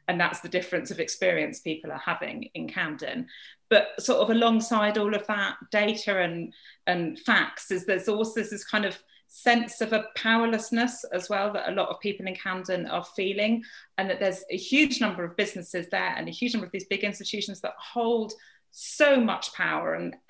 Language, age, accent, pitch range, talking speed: English, 30-49, British, 185-235 Hz, 195 wpm